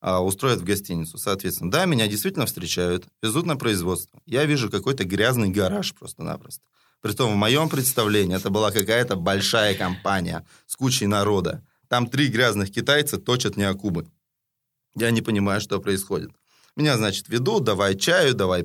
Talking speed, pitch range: 150 wpm, 100-135 Hz